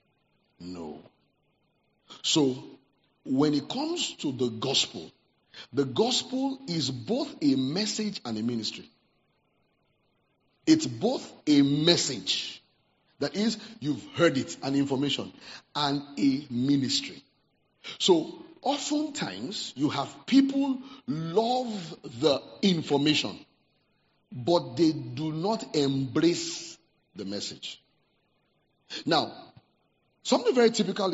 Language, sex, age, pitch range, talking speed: English, male, 50-69, 135-215 Hz, 95 wpm